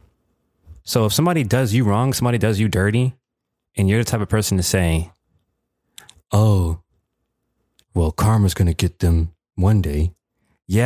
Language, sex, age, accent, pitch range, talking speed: English, male, 20-39, American, 100-160 Hz, 150 wpm